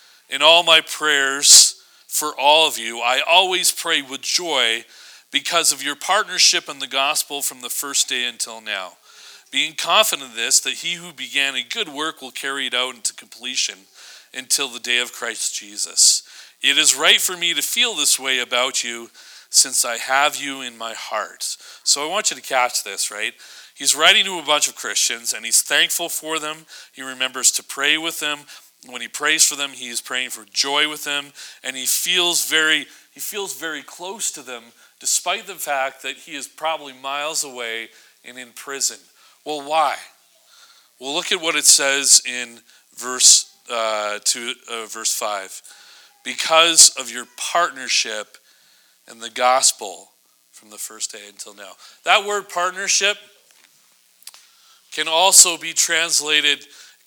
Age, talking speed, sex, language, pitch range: 40-59, 170 wpm, male, English, 125-165 Hz